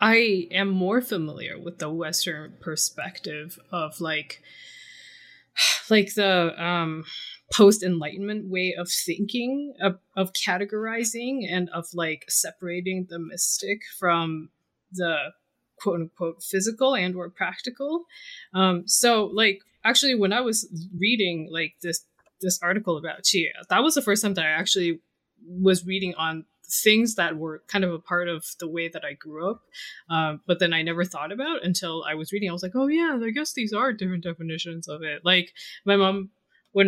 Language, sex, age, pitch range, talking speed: English, female, 20-39, 165-205 Hz, 165 wpm